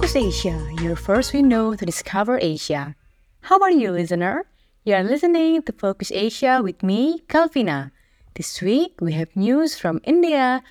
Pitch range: 180-260 Hz